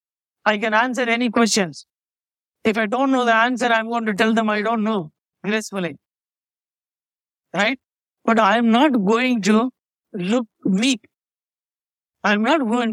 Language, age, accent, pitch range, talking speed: English, 60-79, Indian, 195-235 Hz, 145 wpm